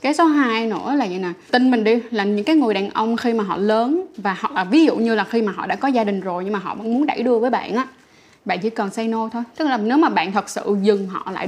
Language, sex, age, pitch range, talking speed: Vietnamese, female, 20-39, 205-255 Hz, 315 wpm